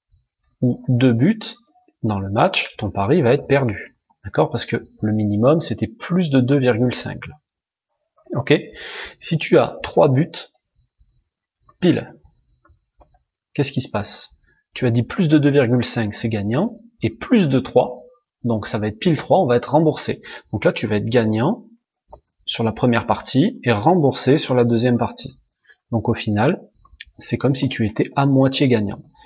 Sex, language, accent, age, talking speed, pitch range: male, French, French, 30-49, 165 wpm, 110-135 Hz